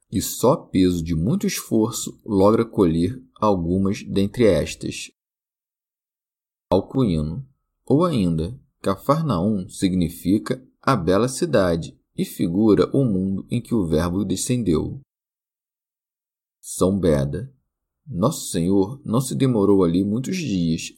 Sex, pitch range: male, 90-120 Hz